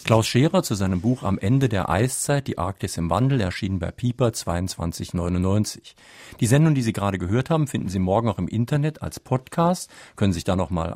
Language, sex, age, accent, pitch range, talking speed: German, male, 50-69, German, 95-125 Hz, 205 wpm